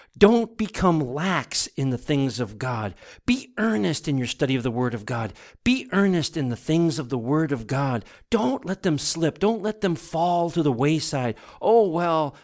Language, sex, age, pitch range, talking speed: English, male, 50-69, 130-175 Hz, 200 wpm